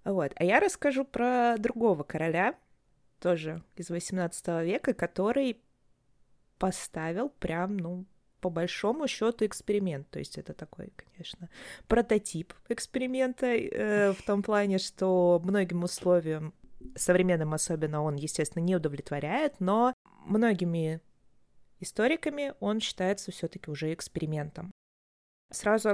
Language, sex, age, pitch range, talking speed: Russian, female, 20-39, 165-215 Hz, 110 wpm